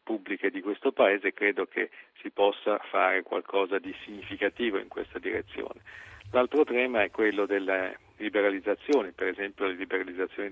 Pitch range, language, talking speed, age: 100-115 Hz, Italian, 145 wpm, 50-69